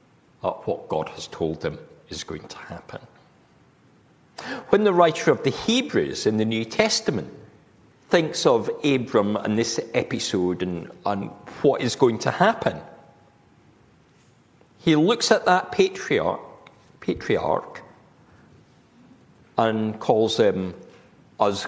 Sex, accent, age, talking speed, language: male, British, 50-69, 120 wpm, English